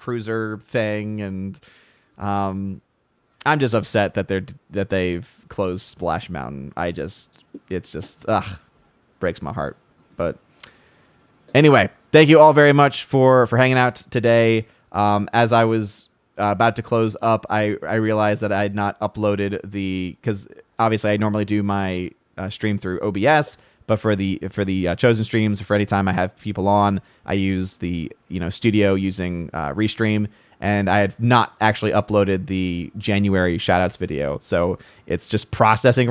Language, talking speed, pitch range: English, 165 wpm, 95-115 Hz